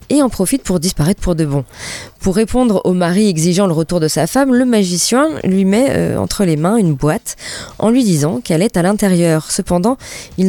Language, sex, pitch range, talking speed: French, female, 170-220 Hz, 205 wpm